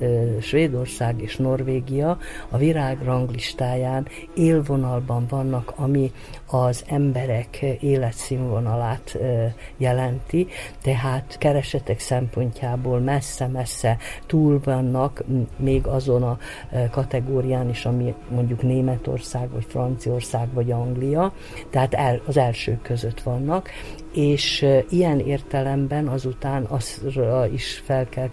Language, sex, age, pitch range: Hungarian, female, 50-69, 120-135 Hz